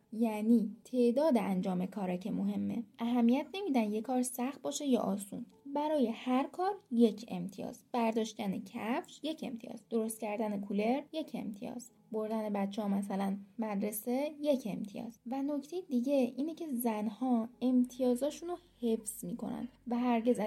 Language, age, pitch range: Persian, 10-29, 220-275 Hz